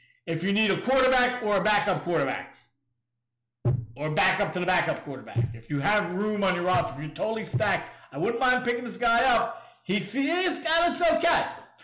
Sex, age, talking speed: male, 40-59, 200 wpm